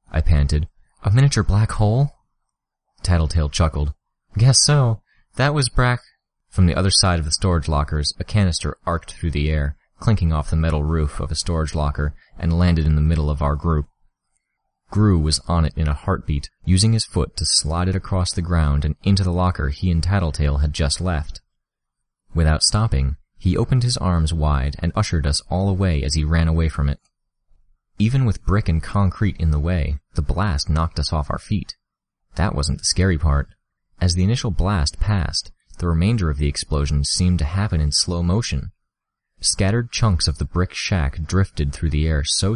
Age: 30-49